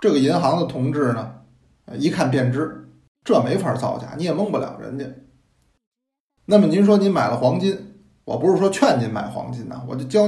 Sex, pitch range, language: male, 125-180 Hz, Chinese